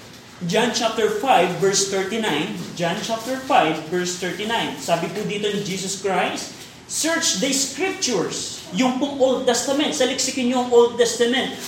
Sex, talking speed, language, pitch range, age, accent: male, 135 wpm, Filipino, 215-265 Hz, 20-39, native